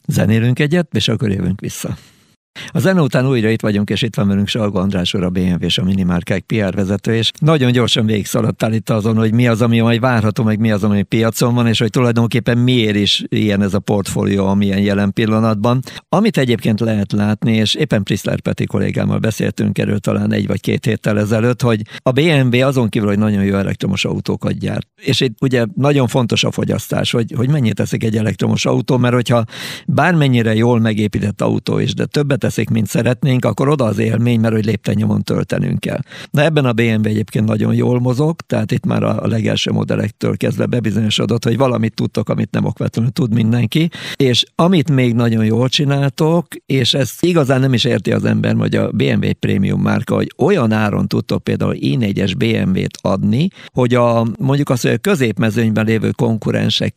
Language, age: Hungarian, 60-79